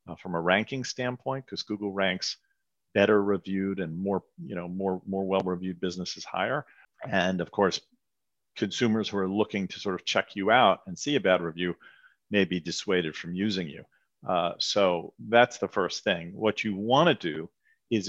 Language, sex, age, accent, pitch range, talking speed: English, male, 50-69, American, 90-115 Hz, 185 wpm